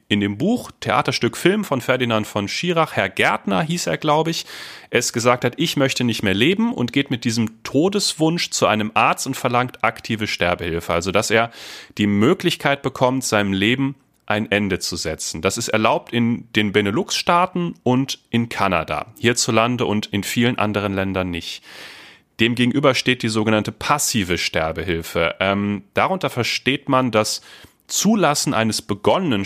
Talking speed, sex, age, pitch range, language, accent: 155 wpm, male, 30-49, 100-130 Hz, German, German